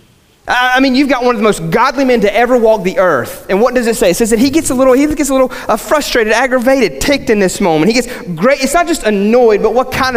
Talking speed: 275 wpm